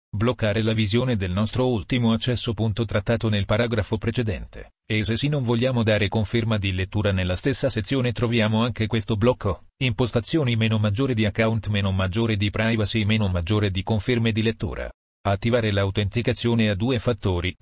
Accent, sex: native, male